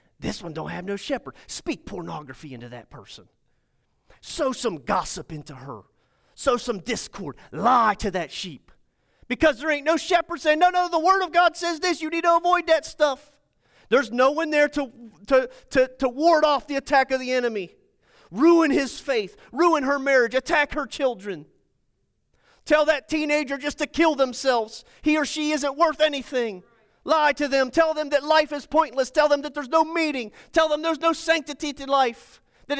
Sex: male